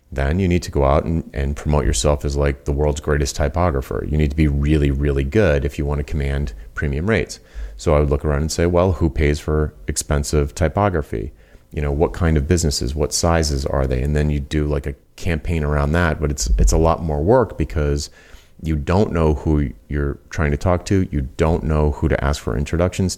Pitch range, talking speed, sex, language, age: 75-85 Hz, 225 wpm, male, English, 30-49